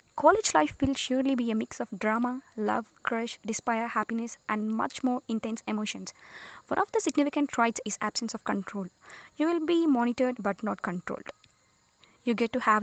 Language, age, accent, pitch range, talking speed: English, 20-39, Indian, 220-275 Hz, 180 wpm